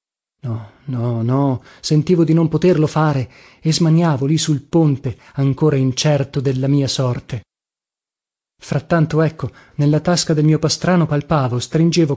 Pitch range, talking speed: 135-165 Hz, 135 wpm